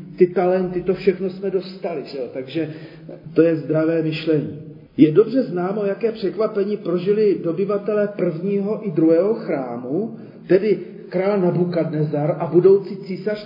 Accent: native